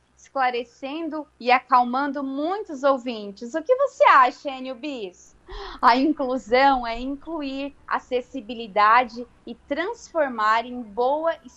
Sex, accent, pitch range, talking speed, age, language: female, Brazilian, 235-290 Hz, 105 wpm, 20-39, Portuguese